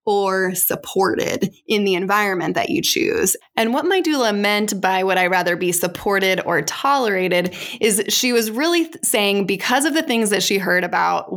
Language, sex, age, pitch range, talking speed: English, female, 20-39, 185-230 Hz, 180 wpm